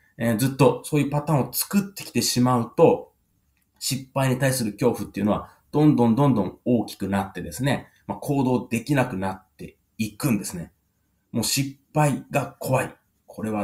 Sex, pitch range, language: male, 100-135 Hz, Japanese